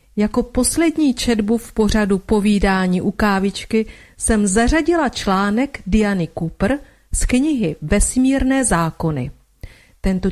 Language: Czech